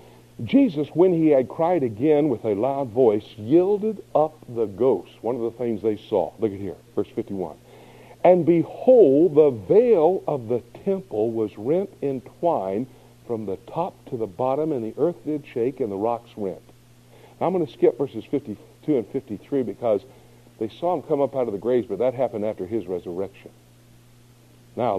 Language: English